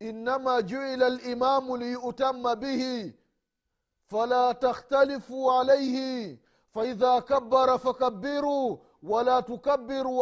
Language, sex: Swahili, male